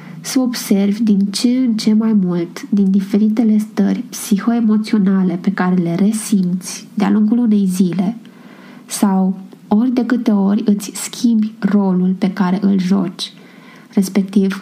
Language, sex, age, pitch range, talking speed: Romanian, female, 20-39, 200-225 Hz, 135 wpm